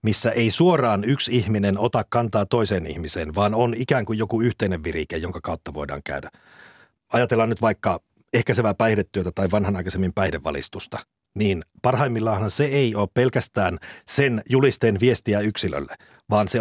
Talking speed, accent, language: 145 wpm, native, Finnish